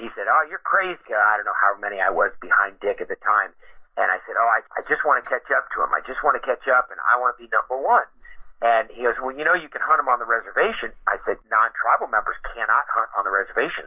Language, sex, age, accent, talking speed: English, male, 50-69, American, 285 wpm